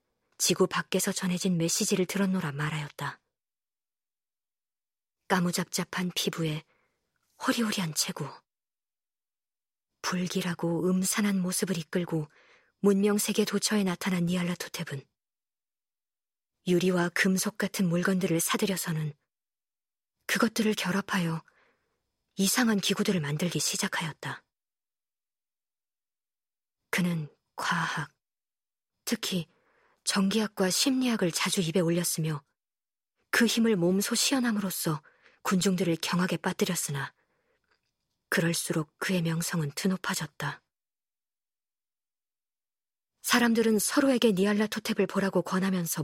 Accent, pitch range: native, 170-205 Hz